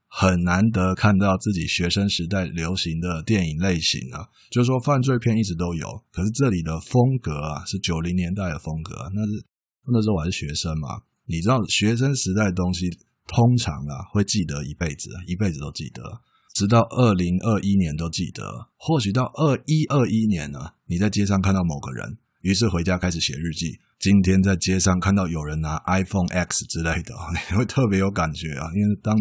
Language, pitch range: Chinese, 85-110 Hz